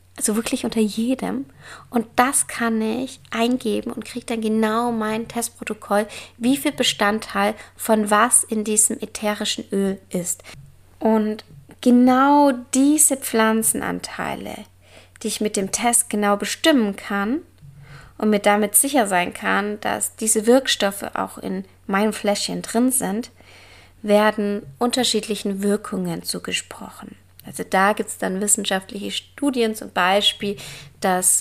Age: 20-39